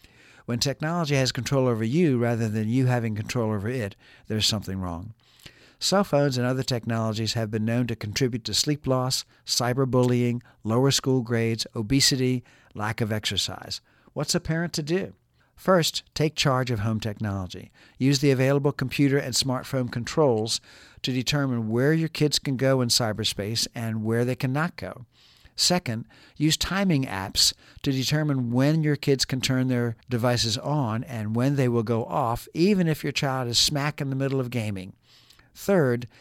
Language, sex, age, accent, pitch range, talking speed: English, male, 60-79, American, 115-140 Hz, 165 wpm